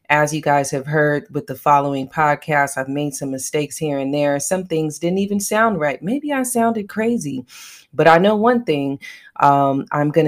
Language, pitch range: English, 145-190 Hz